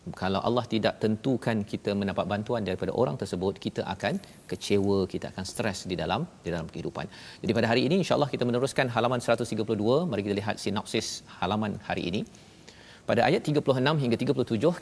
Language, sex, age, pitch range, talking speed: Malayalam, male, 40-59, 100-125 Hz, 170 wpm